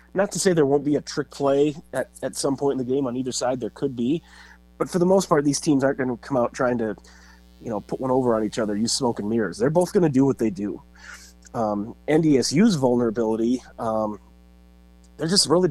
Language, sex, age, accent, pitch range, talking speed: English, male, 30-49, American, 110-140 Hz, 240 wpm